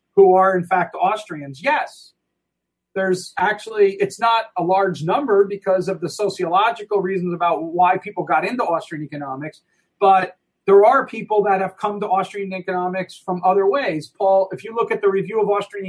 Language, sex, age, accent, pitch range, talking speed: English, male, 40-59, American, 170-200 Hz, 180 wpm